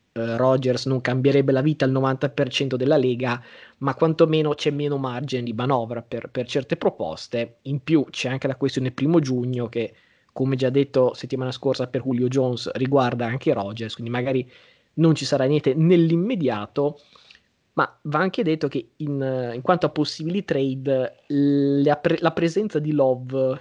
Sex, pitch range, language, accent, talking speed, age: male, 130-145 Hz, Italian, native, 165 wpm, 20-39